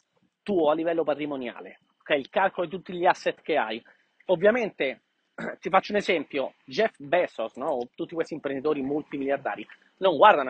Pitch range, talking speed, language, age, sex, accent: 145-200 Hz, 150 wpm, Italian, 30-49, male, native